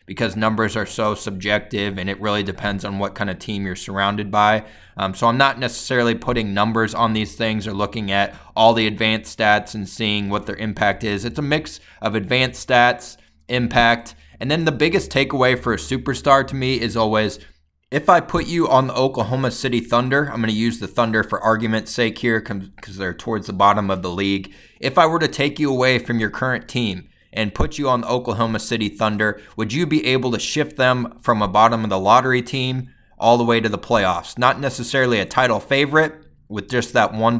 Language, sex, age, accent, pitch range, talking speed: English, male, 20-39, American, 105-125 Hz, 215 wpm